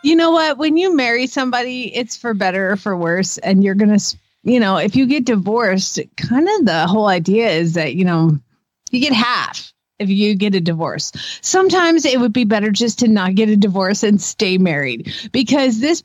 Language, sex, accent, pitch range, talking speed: English, female, American, 190-260 Hz, 210 wpm